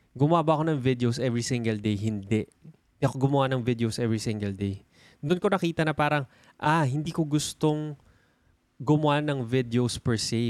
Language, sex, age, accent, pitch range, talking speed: Filipino, male, 20-39, native, 110-145 Hz, 165 wpm